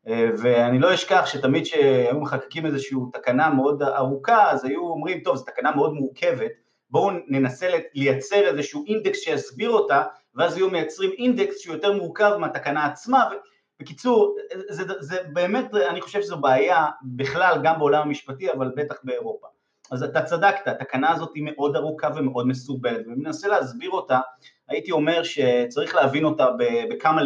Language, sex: Hebrew, male